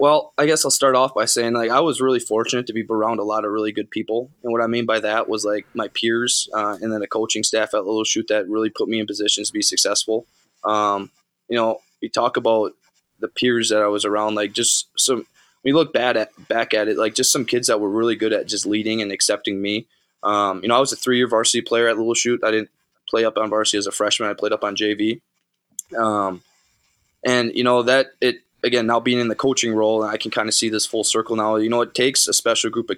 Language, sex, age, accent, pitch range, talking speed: English, male, 20-39, American, 105-115 Hz, 260 wpm